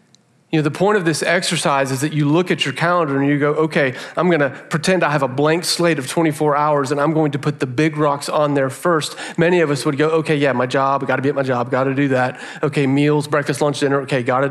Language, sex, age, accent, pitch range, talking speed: English, male, 40-59, American, 140-175 Hz, 260 wpm